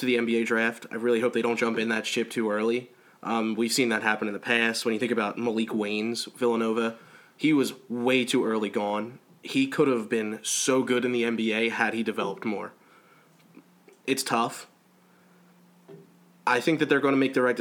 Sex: male